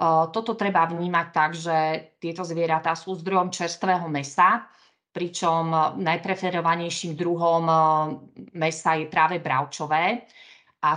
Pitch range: 160-180 Hz